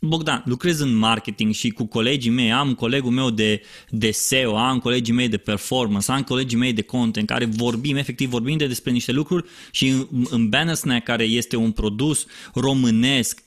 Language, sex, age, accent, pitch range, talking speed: Romanian, male, 20-39, native, 125-200 Hz, 185 wpm